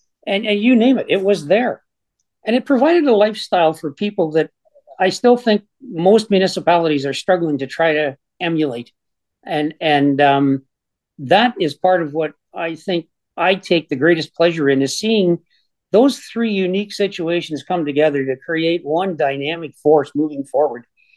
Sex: male